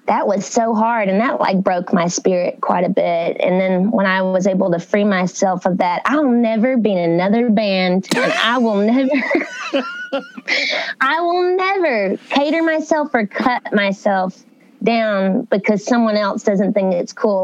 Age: 20-39